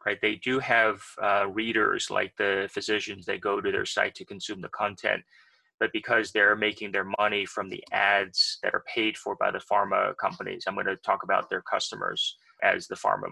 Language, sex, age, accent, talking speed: English, male, 30-49, American, 205 wpm